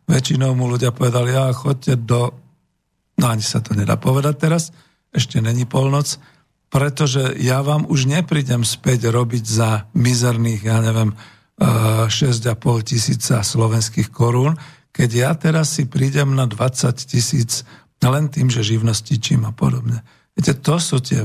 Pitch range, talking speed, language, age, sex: 115-145 Hz, 145 wpm, Slovak, 50-69, male